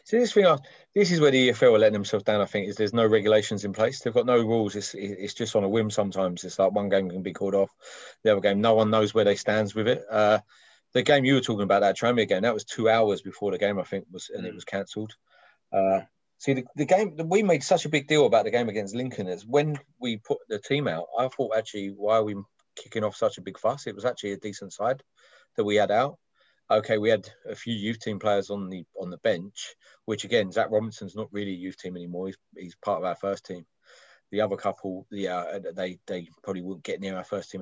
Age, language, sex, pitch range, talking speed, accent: 30-49, English, male, 100-135 Hz, 260 wpm, British